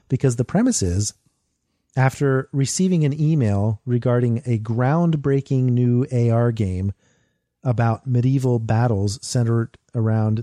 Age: 40-59